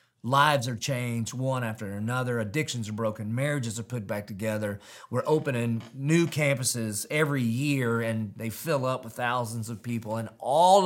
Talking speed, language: 165 wpm, English